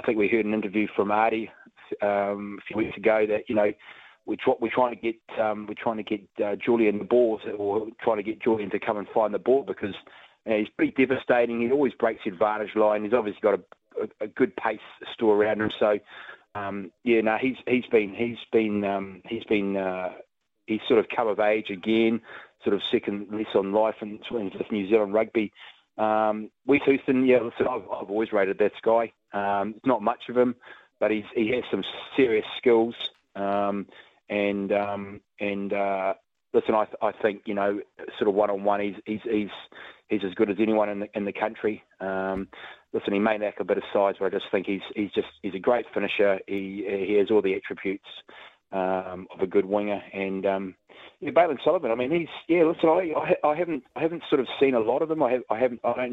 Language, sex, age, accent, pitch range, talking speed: English, male, 30-49, Australian, 100-115 Hz, 225 wpm